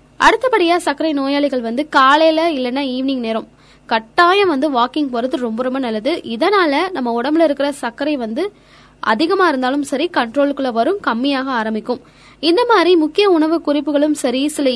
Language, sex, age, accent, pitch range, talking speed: Tamil, female, 20-39, native, 240-305 Hz, 140 wpm